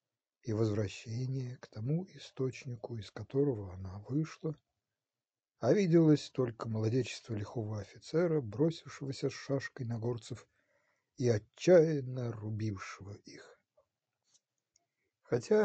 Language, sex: Ukrainian, male